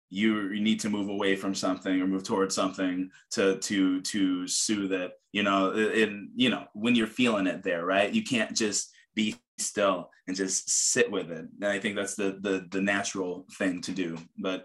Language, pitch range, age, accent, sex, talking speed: English, 95-110 Hz, 20-39, American, male, 200 wpm